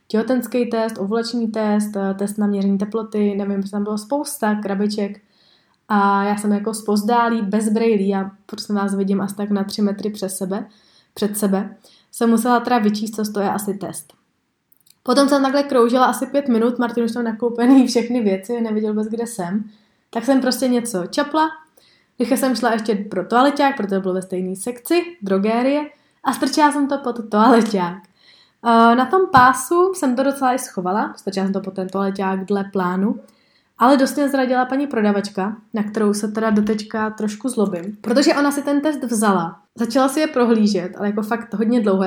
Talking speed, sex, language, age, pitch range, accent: 180 wpm, female, Czech, 20-39, 200-255 Hz, native